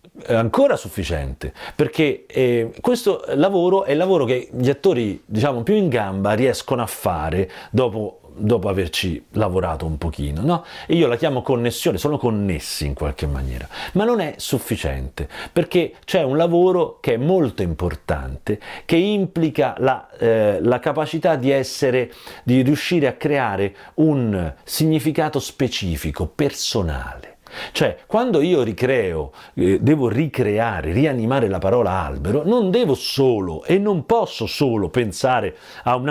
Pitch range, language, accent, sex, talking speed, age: 100-165 Hz, Italian, native, male, 145 wpm, 40-59